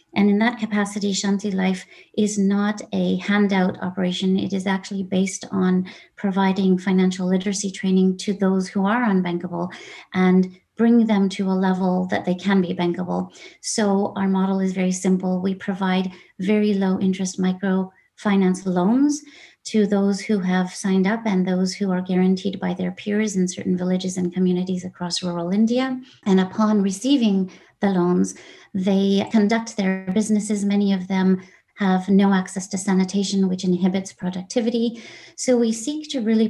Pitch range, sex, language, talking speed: 185-205 Hz, female, English, 160 wpm